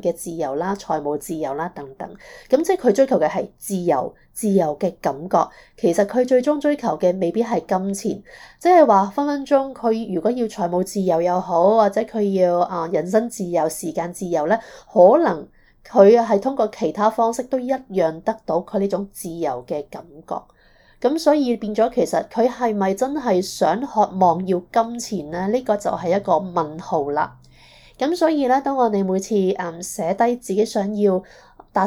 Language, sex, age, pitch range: Chinese, female, 30-49, 185-235 Hz